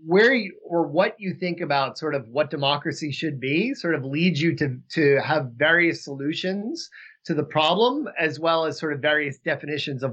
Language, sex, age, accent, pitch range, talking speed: English, male, 30-49, American, 145-185 Hz, 195 wpm